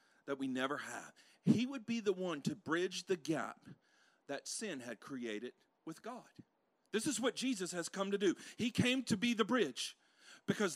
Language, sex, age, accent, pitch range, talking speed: English, male, 40-59, American, 195-280 Hz, 190 wpm